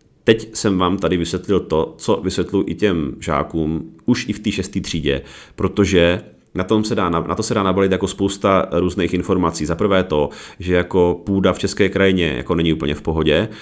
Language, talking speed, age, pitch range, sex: Czech, 205 wpm, 30-49, 80-95 Hz, male